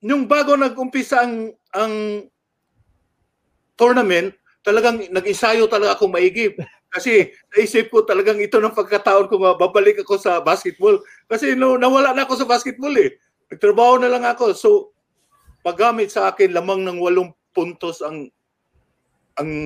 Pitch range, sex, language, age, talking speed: 180-240 Hz, male, English, 50-69, 135 wpm